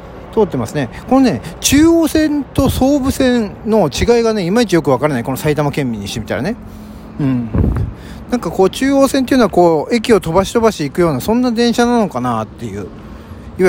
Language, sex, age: Japanese, male, 40-59